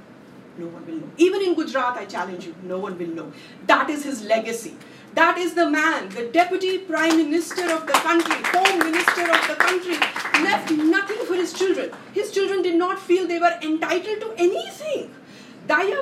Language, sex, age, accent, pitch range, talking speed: English, female, 50-69, Indian, 215-335 Hz, 185 wpm